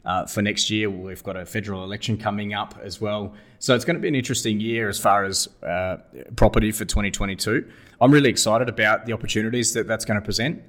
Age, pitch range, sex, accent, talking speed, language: 20-39, 95-115 Hz, male, Australian, 220 wpm, English